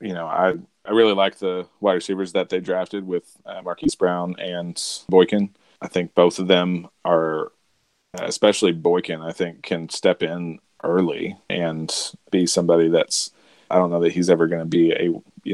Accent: American